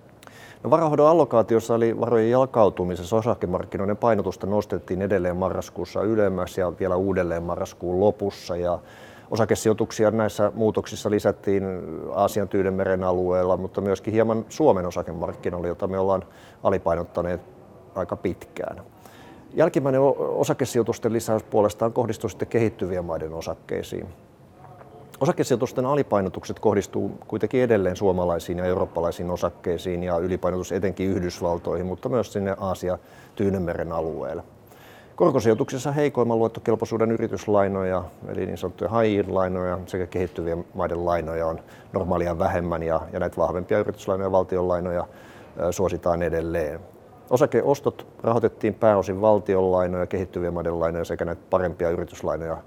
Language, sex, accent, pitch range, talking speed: Finnish, male, native, 90-115 Hz, 110 wpm